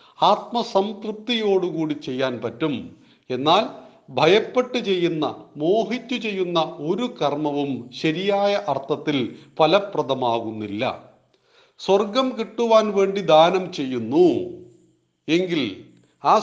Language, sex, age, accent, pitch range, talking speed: Malayalam, male, 40-59, native, 150-210 Hz, 75 wpm